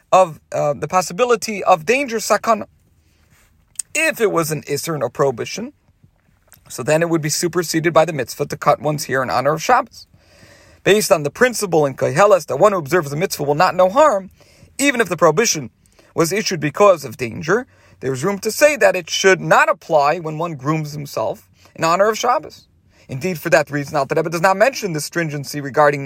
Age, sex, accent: 40-59, male, American